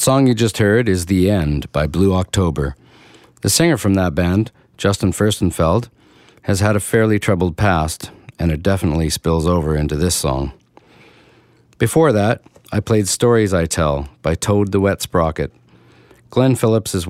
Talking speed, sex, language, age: 160 wpm, male, English, 50-69